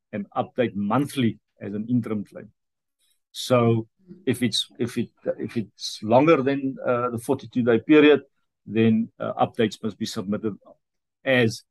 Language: English